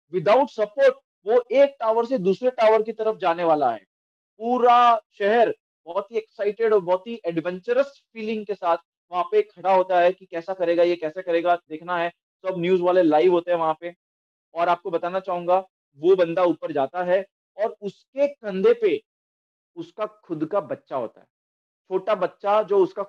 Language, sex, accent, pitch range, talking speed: Hindi, male, native, 180-240 Hz, 175 wpm